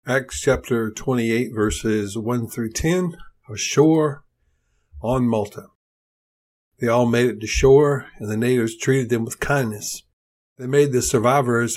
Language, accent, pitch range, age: English, American, 110-130 Hz, 60-79